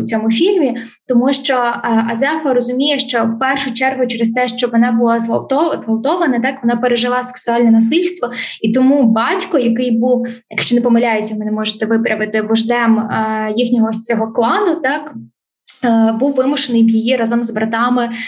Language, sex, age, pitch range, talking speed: Ukrainian, female, 20-39, 225-260 Hz, 150 wpm